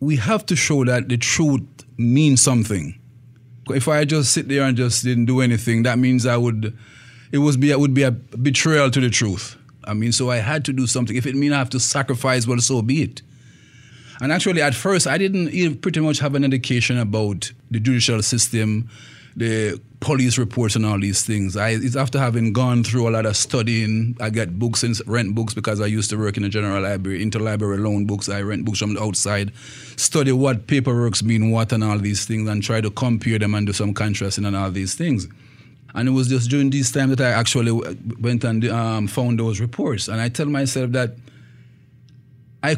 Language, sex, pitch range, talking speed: English, male, 110-130 Hz, 215 wpm